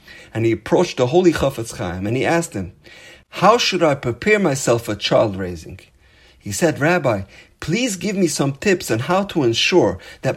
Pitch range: 105-165 Hz